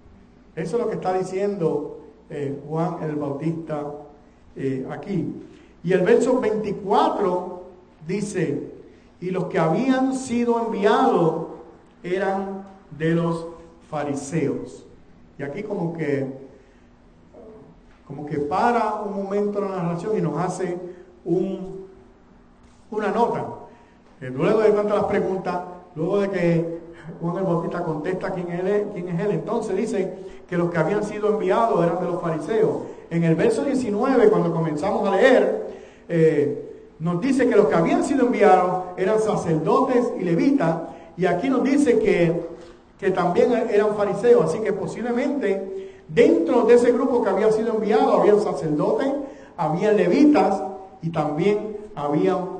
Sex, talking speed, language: male, 140 wpm, English